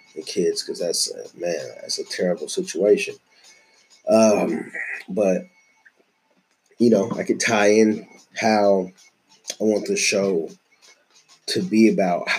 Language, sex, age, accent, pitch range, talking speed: English, male, 30-49, American, 110-135 Hz, 125 wpm